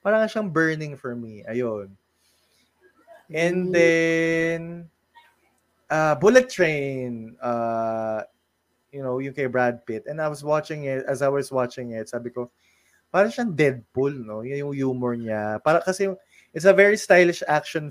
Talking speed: 150 wpm